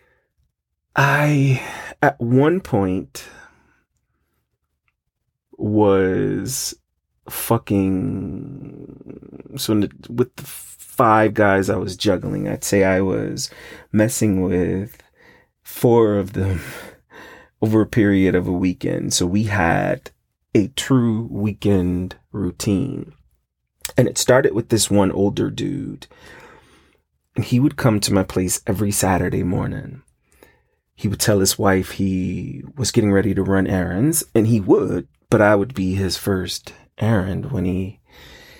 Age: 30-49